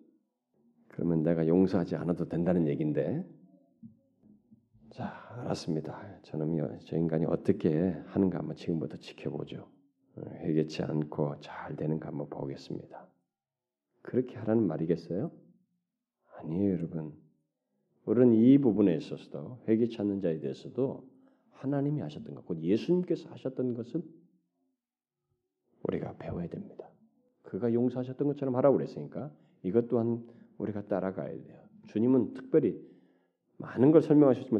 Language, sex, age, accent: Korean, male, 40-59, native